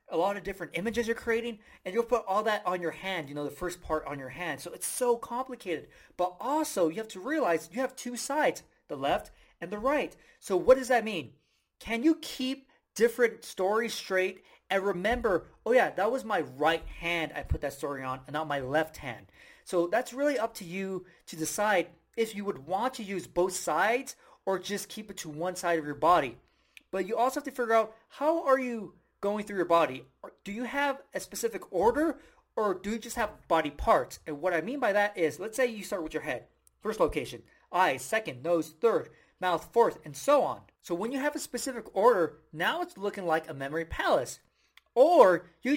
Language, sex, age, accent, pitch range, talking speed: English, male, 30-49, American, 170-245 Hz, 220 wpm